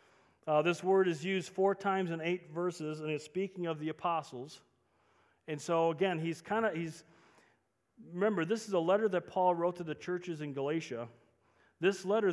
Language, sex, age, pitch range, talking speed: English, male, 40-59, 150-190 Hz, 185 wpm